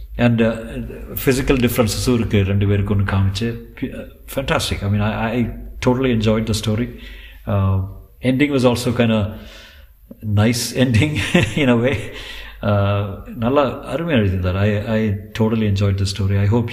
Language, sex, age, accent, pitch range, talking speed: Tamil, male, 50-69, native, 100-115 Hz, 140 wpm